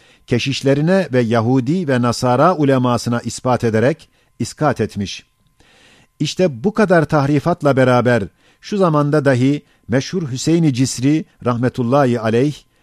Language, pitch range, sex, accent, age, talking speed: Turkish, 120-150 Hz, male, native, 50-69, 110 wpm